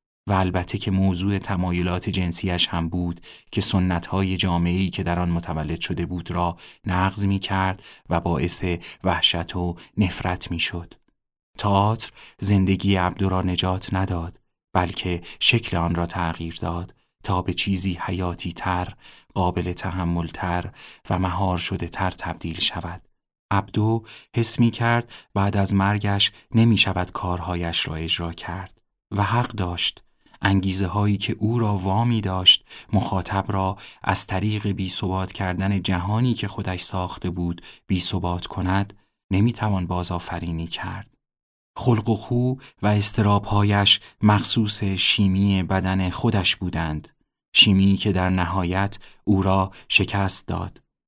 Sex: male